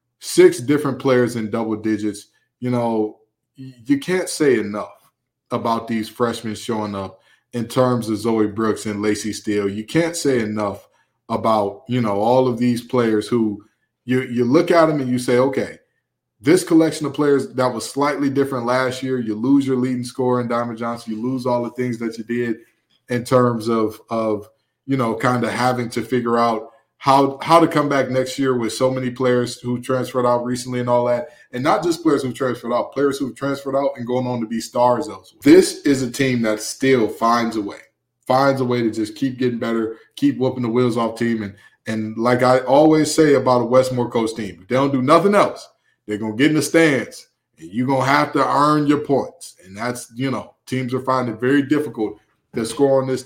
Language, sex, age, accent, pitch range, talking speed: English, male, 20-39, American, 115-135 Hz, 215 wpm